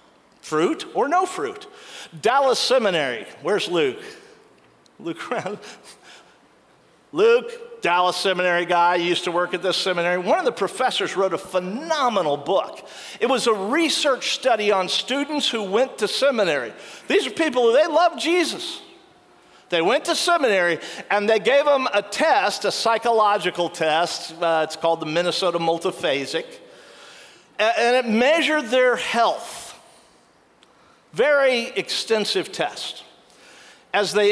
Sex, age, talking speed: male, 50-69, 130 wpm